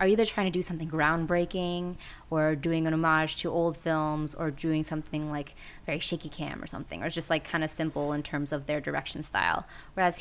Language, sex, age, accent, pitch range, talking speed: English, female, 20-39, American, 150-175 Hz, 220 wpm